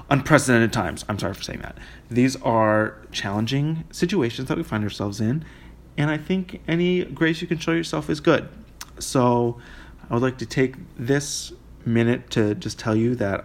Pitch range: 105-125 Hz